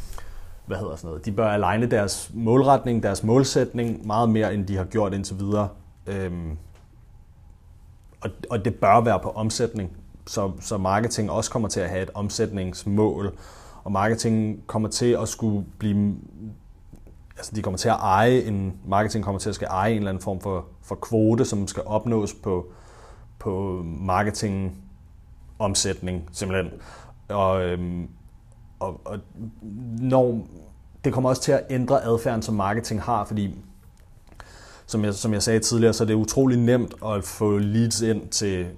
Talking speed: 155 wpm